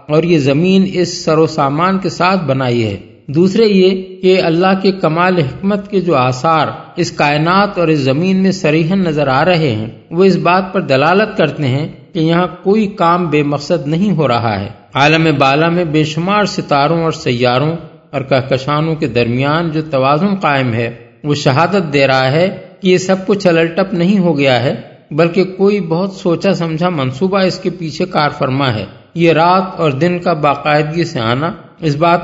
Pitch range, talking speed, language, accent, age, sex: 145-180 Hz, 185 wpm, English, Indian, 50-69, male